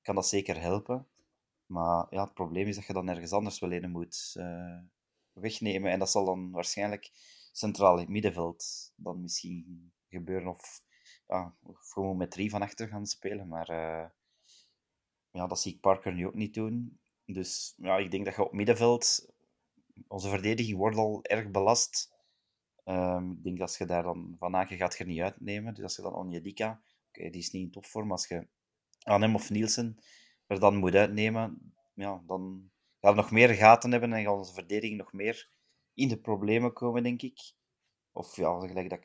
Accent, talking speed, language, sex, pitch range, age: Belgian, 190 wpm, Dutch, male, 90-110 Hz, 30-49